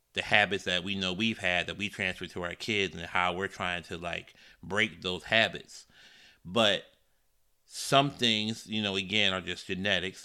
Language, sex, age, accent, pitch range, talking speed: English, male, 30-49, American, 95-110 Hz, 180 wpm